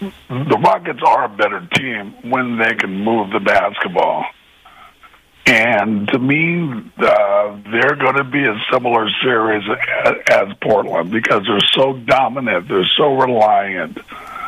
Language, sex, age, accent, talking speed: English, male, 60-79, American, 135 wpm